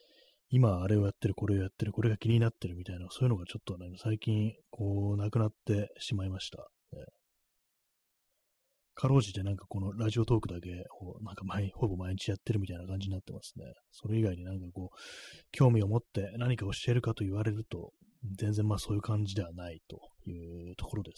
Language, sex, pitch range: Japanese, male, 90-120 Hz